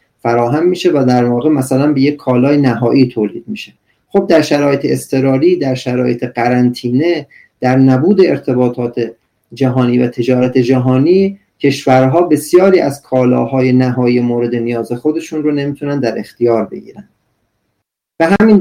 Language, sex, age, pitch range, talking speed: Persian, male, 40-59, 120-160 Hz, 130 wpm